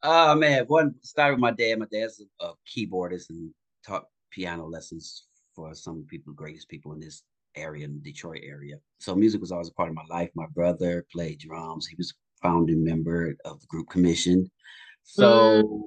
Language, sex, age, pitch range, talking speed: English, male, 30-49, 85-130 Hz, 195 wpm